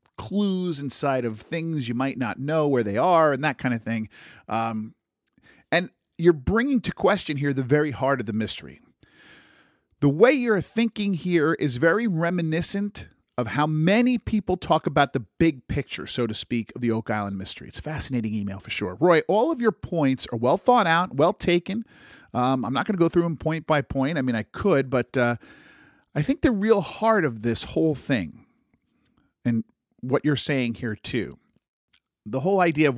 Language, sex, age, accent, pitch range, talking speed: English, male, 40-59, American, 120-170 Hz, 195 wpm